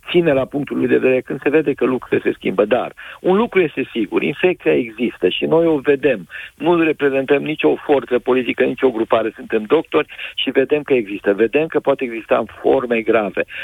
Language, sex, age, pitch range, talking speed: Romanian, male, 50-69, 130-180 Hz, 195 wpm